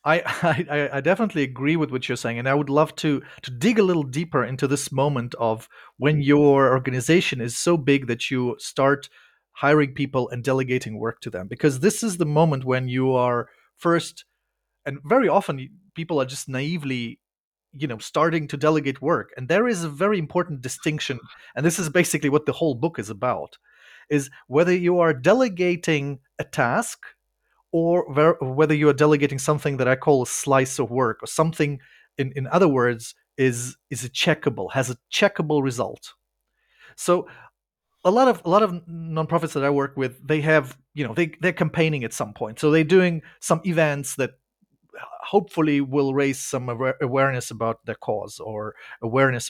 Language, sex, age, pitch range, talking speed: English, male, 30-49, 130-170 Hz, 180 wpm